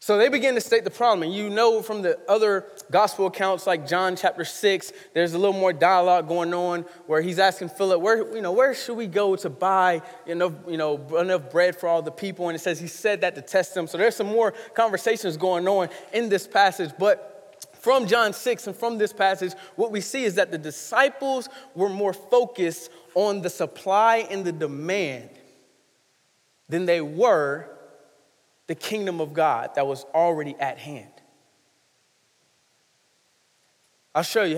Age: 20-39